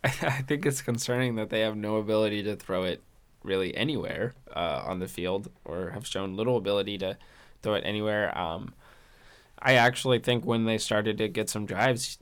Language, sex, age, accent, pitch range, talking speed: English, male, 20-39, American, 105-120 Hz, 185 wpm